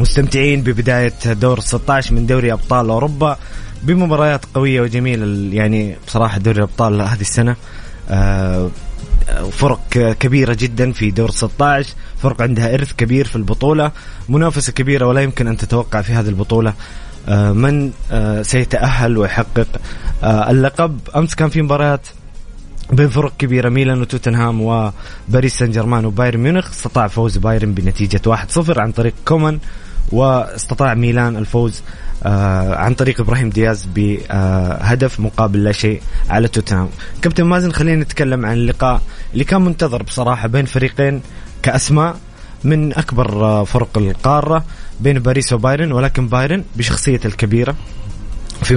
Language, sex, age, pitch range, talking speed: Arabic, male, 20-39, 105-135 Hz, 130 wpm